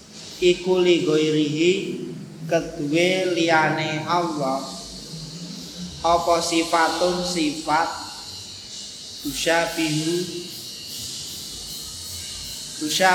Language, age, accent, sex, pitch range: Indonesian, 30-49, native, male, 150-180 Hz